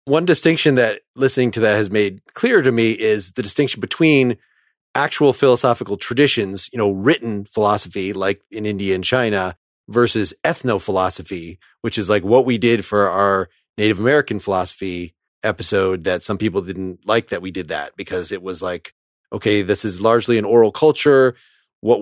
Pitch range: 100-130 Hz